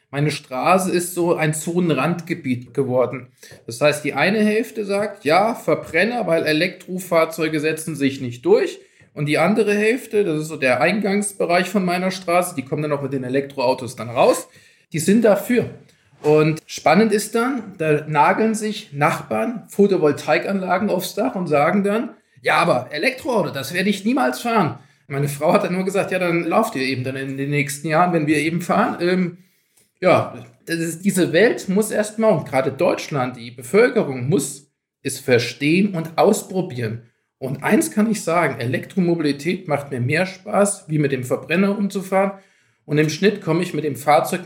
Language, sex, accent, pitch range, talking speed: German, male, German, 145-195 Hz, 175 wpm